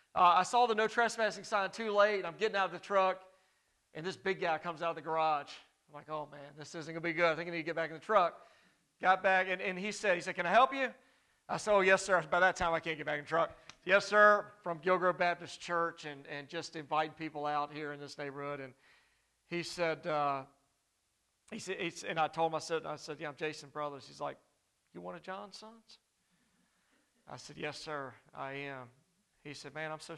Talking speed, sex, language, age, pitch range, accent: 255 wpm, male, English, 40-59, 150-195 Hz, American